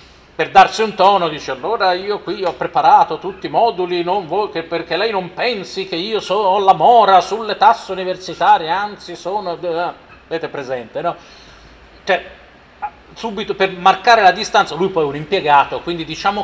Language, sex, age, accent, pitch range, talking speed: Italian, male, 40-59, native, 165-225 Hz, 175 wpm